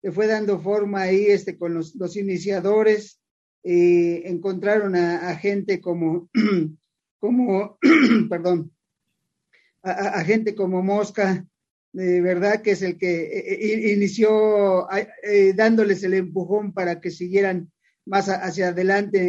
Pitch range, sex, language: 190-225 Hz, male, English